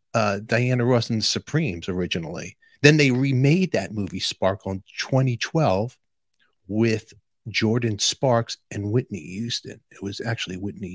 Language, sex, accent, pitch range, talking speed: English, male, American, 95-115 Hz, 135 wpm